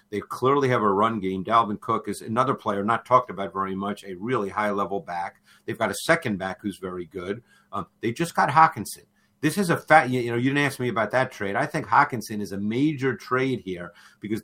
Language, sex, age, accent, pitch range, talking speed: English, male, 50-69, American, 100-130 Hz, 230 wpm